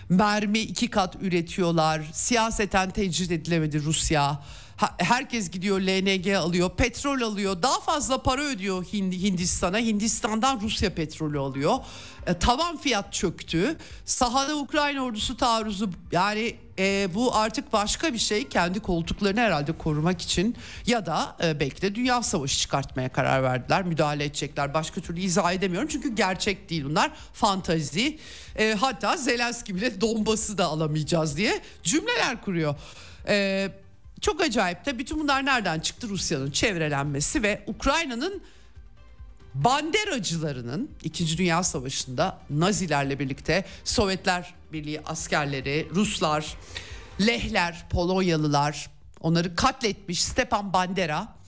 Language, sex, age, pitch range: Turkish, male, 50-69, 155-225 Hz